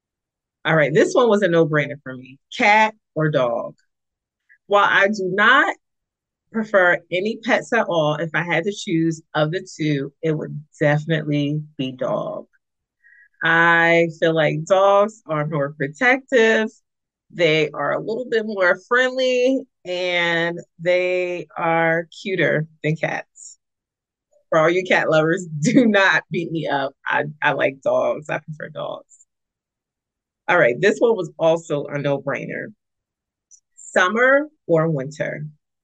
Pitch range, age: 155-200 Hz, 30-49